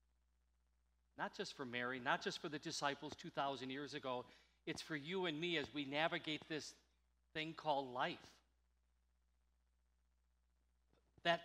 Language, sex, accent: English, male, American